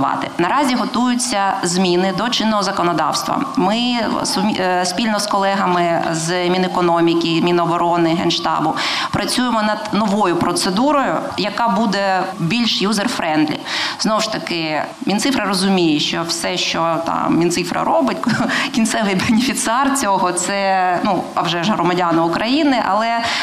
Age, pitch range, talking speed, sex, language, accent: 20-39, 180-225 Hz, 115 wpm, female, Ukrainian, native